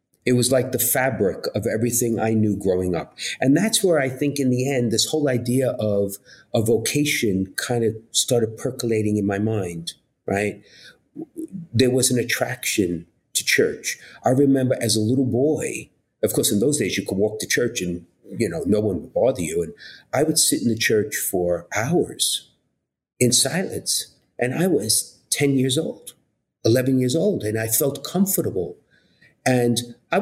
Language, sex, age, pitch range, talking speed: English, male, 50-69, 105-140 Hz, 175 wpm